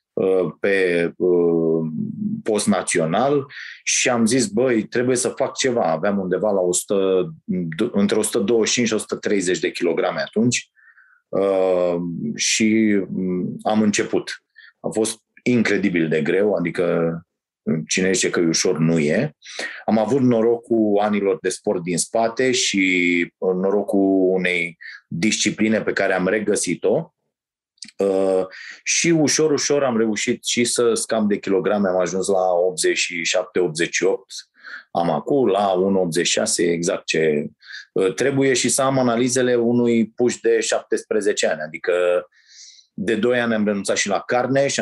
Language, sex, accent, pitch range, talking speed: Romanian, male, native, 95-130 Hz, 125 wpm